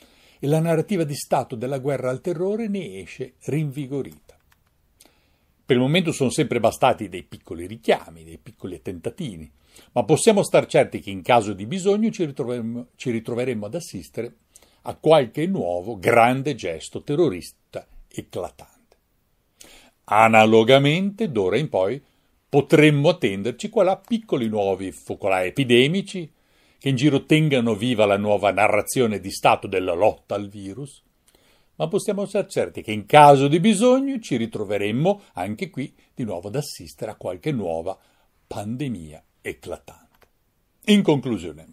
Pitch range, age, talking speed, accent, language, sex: 105-155 Hz, 60-79, 140 wpm, native, Italian, male